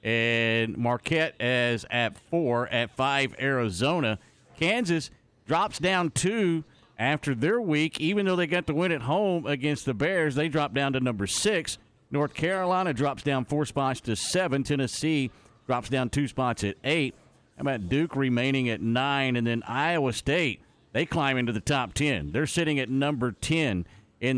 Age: 50-69